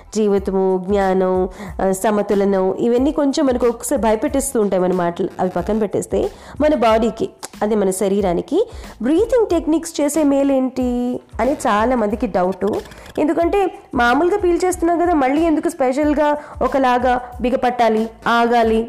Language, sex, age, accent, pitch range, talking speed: Telugu, female, 20-39, native, 210-305 Hz, 120 wpm